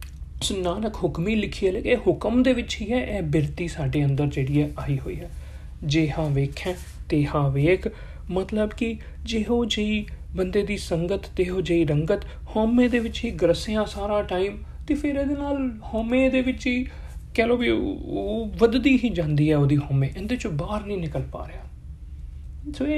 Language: Punjabi